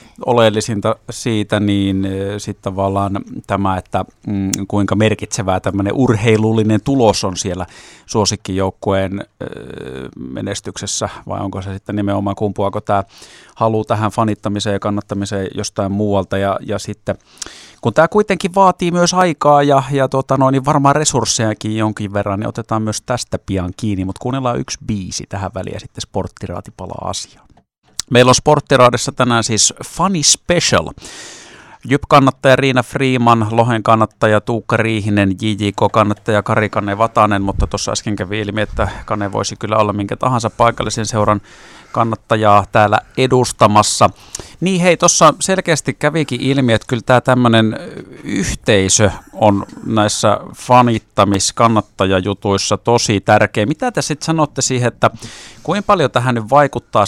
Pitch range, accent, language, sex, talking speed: 100-125 Hz, native, Finnish, male, 130 wpm